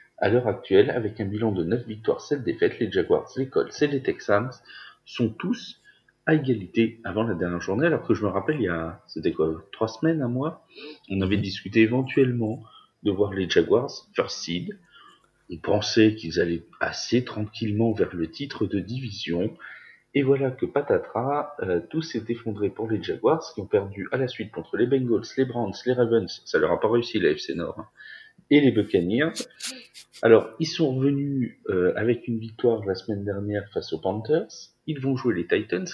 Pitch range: 105-145 Hz